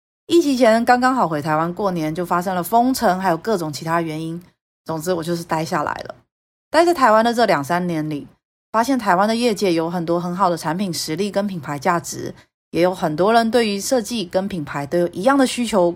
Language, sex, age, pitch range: Chinese, female, 30-49, 170-230 Hz